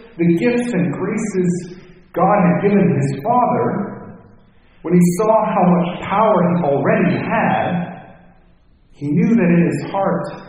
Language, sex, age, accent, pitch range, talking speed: English, male, 40-59, American, 170-210 Hz, 135 wpm